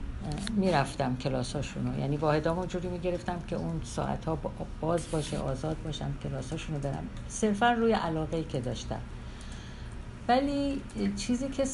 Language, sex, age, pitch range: English, female, 50-69, 135-195 Hz